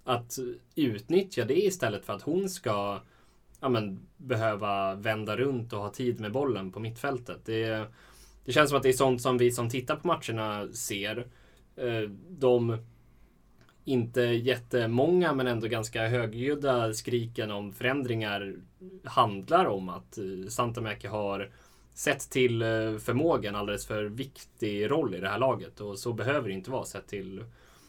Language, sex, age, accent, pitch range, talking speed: Swedish, male, 20-39, native, 105-130 Hz, 150 wpm